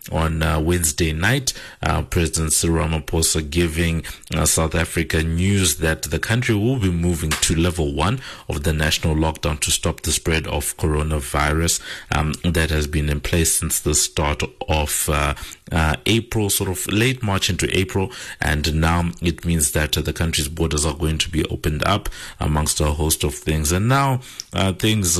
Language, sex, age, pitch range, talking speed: English, male, 50-69, 80-95 Hz, 180 wpm